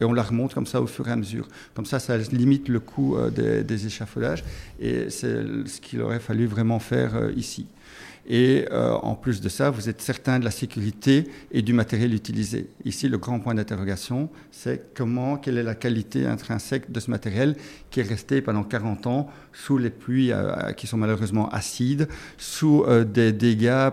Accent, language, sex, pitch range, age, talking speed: French, French, male, 110-135 Hz, 50-69, 195 wpm